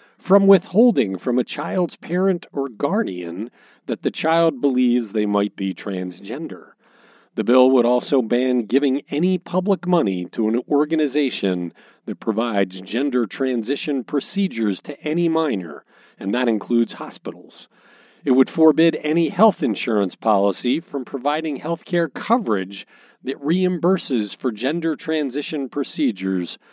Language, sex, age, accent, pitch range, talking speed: English, male, 40-59, American, 115-175 Hz, 130 wpm